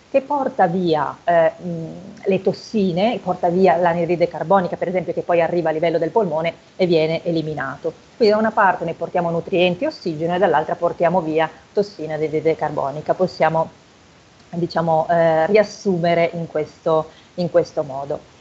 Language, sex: Italian, female